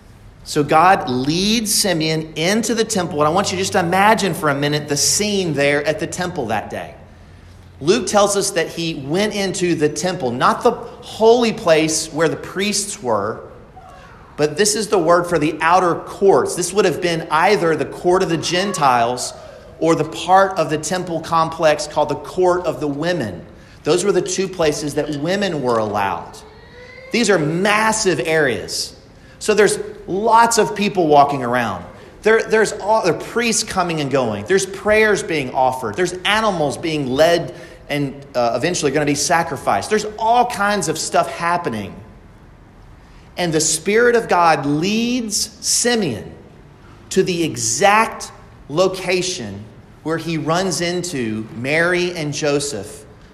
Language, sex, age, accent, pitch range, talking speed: English, male, 40-59, American, 145-195 Hz, 160 wpm